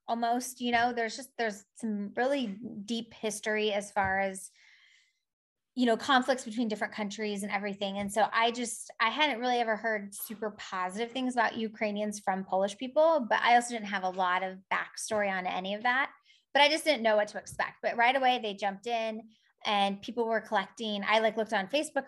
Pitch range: 200-235 Hz